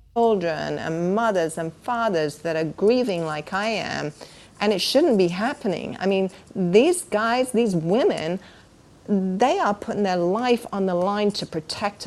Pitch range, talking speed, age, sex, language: 175-215 Hz, 160 wpm, 40-59, female, English